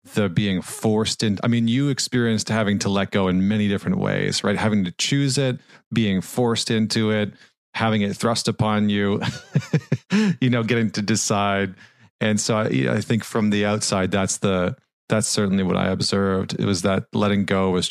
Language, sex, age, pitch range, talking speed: English, male, 30-49, 95-110 Hz, 190 wpm